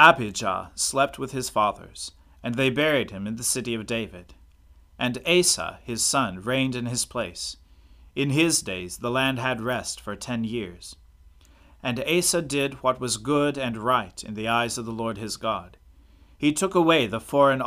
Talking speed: 180 wpm